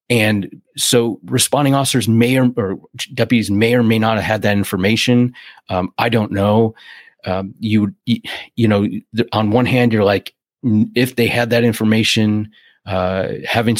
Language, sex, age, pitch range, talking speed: English, male, 30-49, 100-115 Hz, 155 wpm